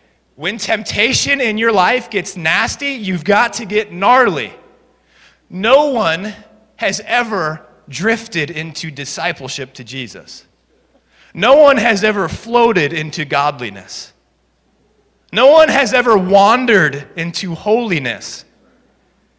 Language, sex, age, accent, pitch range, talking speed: English, male, 30-49, American, 130-225 Hz, 110 wpm